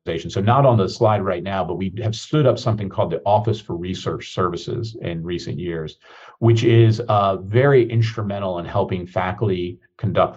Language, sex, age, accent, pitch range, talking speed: English, male, 50-69, American, 90-115 Hz, 180 wpm